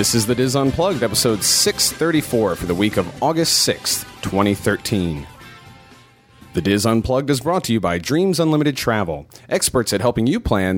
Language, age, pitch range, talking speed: English, 30-49, 105-130 Hz, 165 wpm